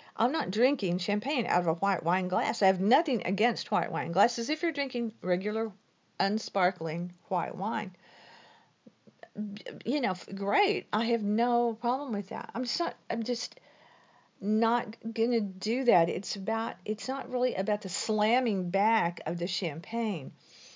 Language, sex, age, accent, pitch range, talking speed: English, female, 50-69, American, 180-235 Hz, 155 wpm